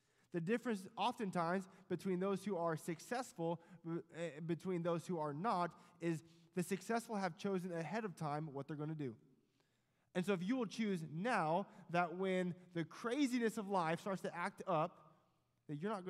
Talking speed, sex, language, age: 165 wpm, male, English, 20-39